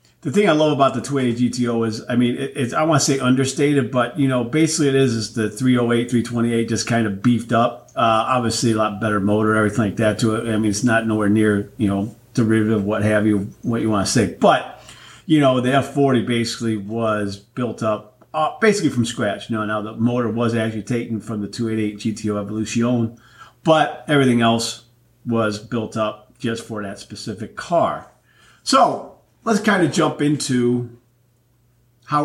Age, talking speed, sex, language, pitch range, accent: 40-59, 190 wpm, male, English, 110-130 Hz, American